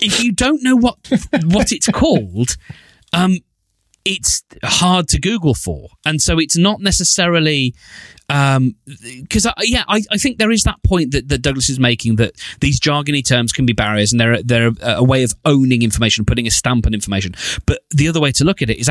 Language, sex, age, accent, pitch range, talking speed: English, male, 30-49, British, 110-145 Hz, 205 wpm